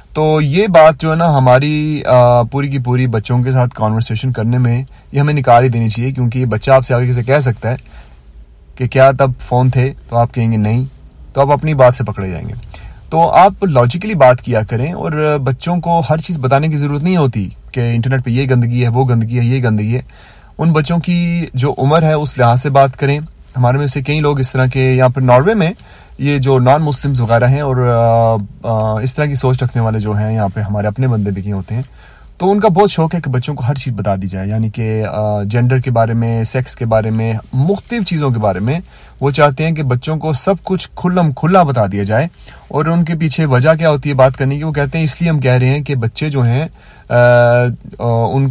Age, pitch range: 30-49, 115-145 Hz